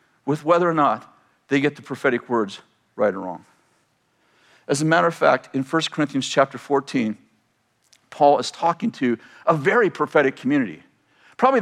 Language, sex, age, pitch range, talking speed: English, male, 50-69, 160-215 Hz, 160 wpm